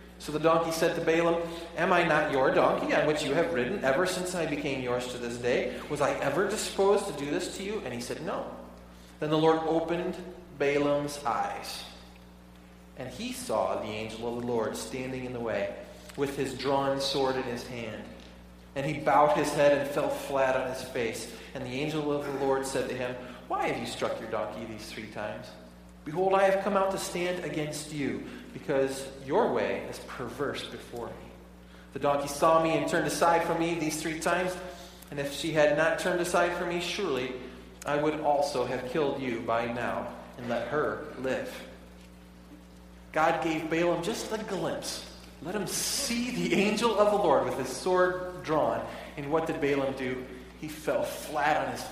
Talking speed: 195 wpm